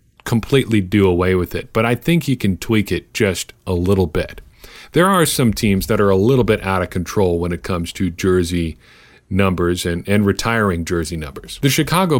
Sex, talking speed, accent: male, 200 wpm, American